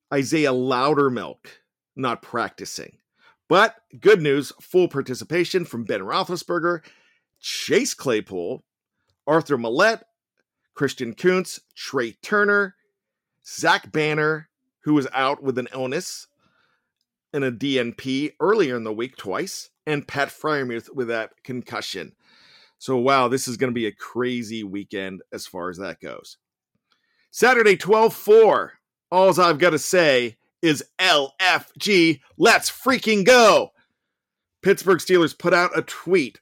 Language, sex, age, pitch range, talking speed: English, male, 40-59, 135-190 Hz, 125 wpm